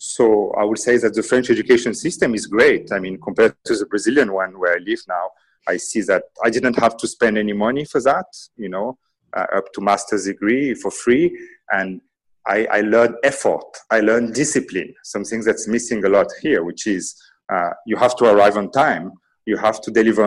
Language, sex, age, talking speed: English, male, 30-49, 205 wpm